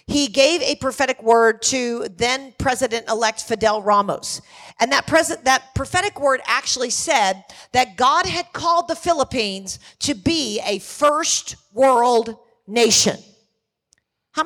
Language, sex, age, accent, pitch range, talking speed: English, female, 50-69, American, 240-300 Hz, 135 wpm